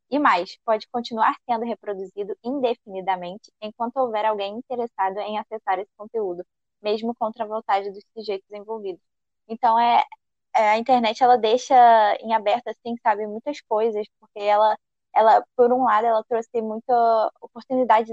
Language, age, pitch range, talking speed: Portuguese, 10-29, 205-235 Hz, 145 wpm